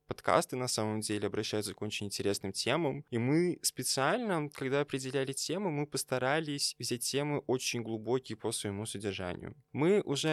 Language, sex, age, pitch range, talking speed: Russian, male, 20-39, 105-130 Hz, 150 wpm